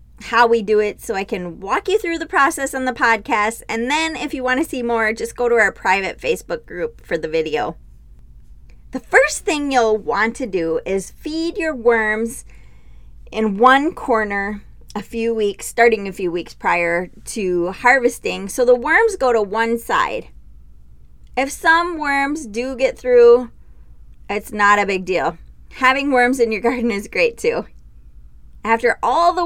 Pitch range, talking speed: 190-280 Hz, 175 wpm